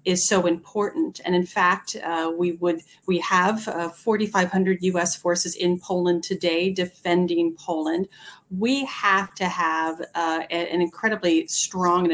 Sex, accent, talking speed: female, American, 150 wpm